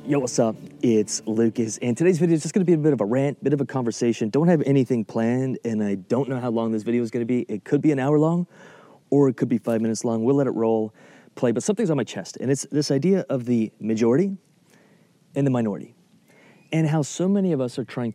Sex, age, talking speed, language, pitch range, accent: male, 30-49, 260 wpm, English, 120-150 Hz, American